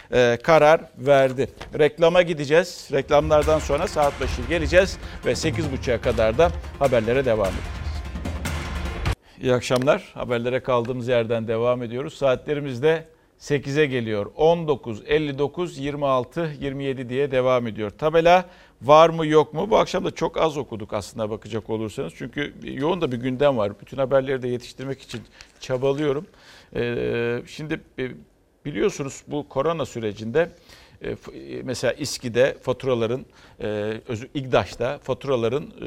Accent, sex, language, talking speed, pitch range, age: native, male, Turkish, 115 wpm, 115-145 Hz, 50-69